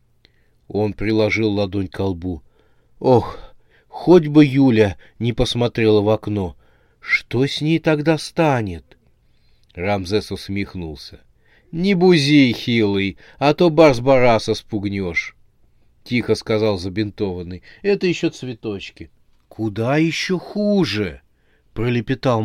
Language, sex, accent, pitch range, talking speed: Russian, male, native, 105-135 Hz, 100 wpm